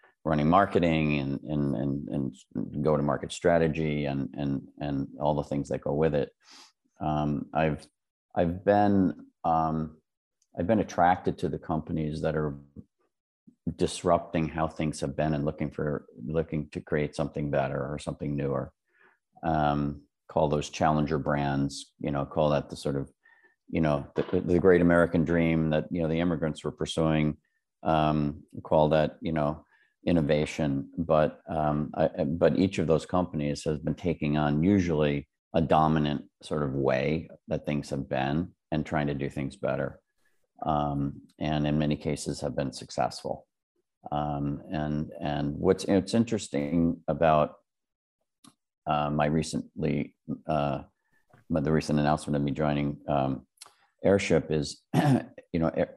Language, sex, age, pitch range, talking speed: English, male, 40-59, 75-80 Hz, 150 wpm